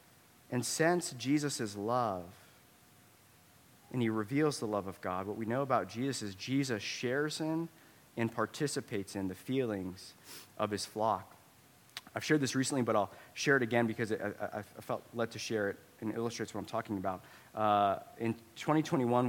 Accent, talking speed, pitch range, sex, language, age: American, 165 wpm, 105-140 Hz, male, English, 30-49